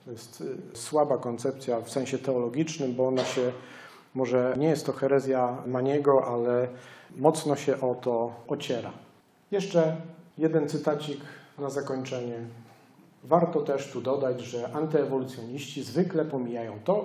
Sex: male